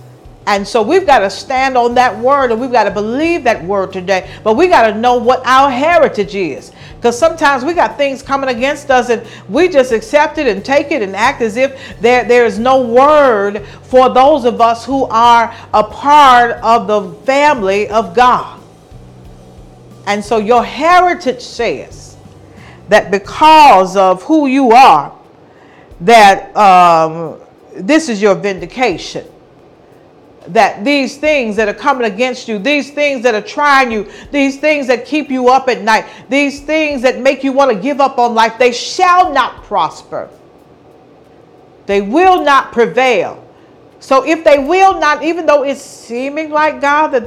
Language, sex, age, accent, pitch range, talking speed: English, female, 50-69, American, 220-285 Hz, 170 wpm